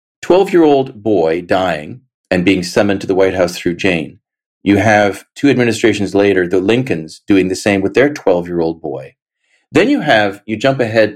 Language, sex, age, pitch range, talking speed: English, male, 40-59, 95-120 Hz, 170 wpm